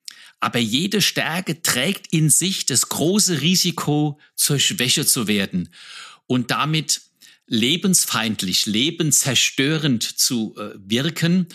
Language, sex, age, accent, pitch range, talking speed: German, male, 60-79, German, 125-180 Hz, 100 wpm